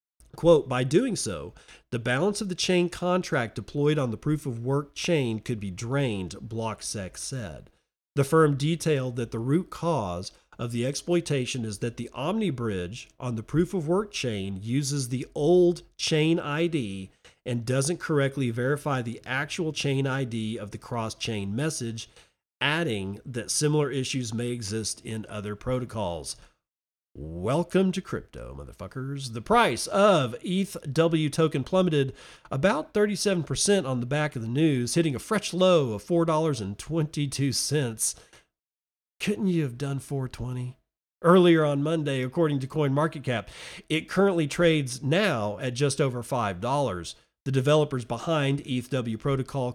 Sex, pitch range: male, 115-160 Hz